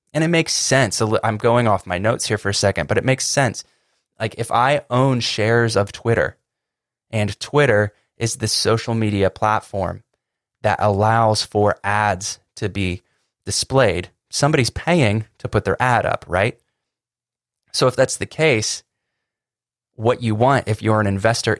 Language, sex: English, male